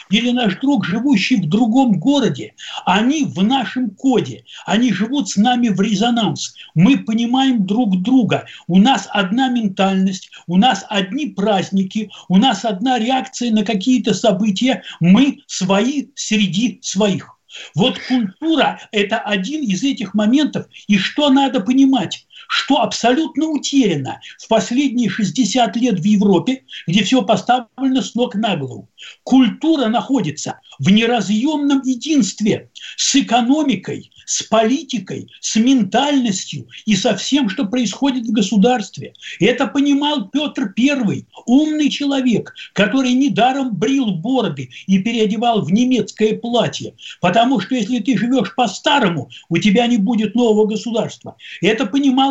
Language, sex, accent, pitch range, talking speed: Russian, male, native, 205-265 Hz, 130 wpm